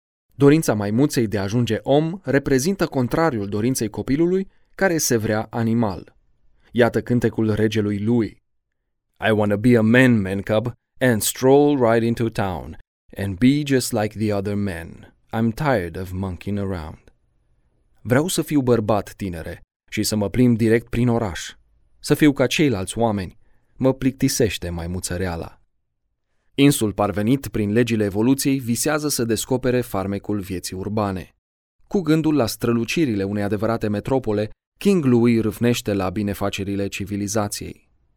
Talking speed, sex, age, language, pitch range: 135 wpm, male, 20-39, Romanian, 100-125 Hz